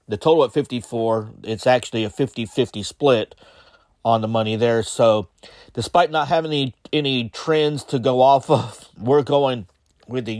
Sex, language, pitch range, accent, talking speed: male, English, 115-135 Hz, American, 160 wpm